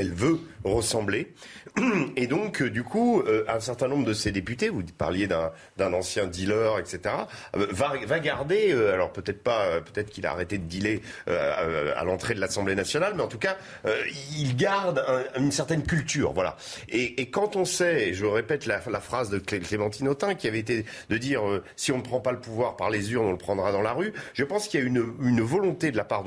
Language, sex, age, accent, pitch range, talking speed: French, male, 40-59, French, 110-170 Hz, 240 wpm